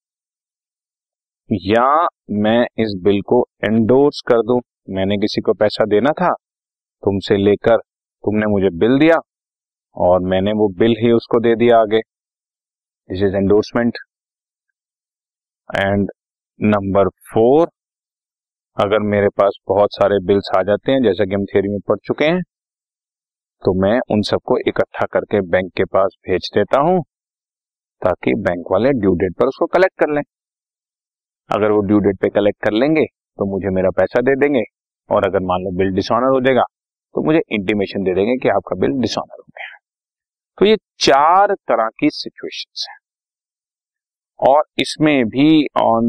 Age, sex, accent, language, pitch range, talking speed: 30-49, male, native, Hindi, 100-135 Hz, 150 wpm